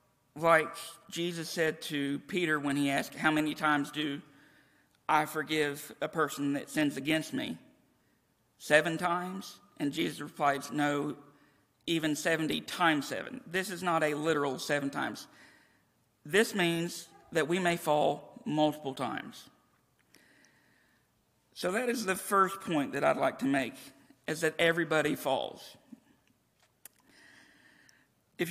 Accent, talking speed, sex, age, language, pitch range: American, 130 wpm, male, 50-69, English, 145-175 Hz